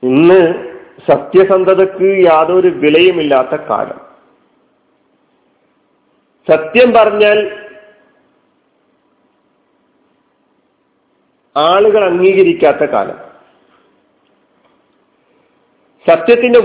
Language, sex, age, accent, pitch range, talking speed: Malayalam, male, 50-69, native, 160-240 Hz, 35 wpm